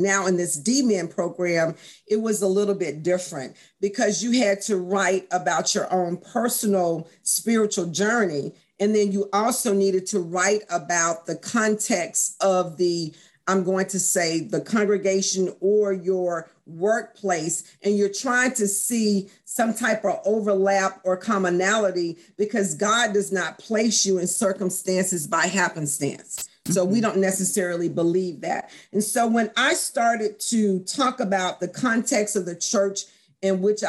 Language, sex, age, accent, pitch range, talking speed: English, female, 50-69, American, 180-215 Hz, 150 wpm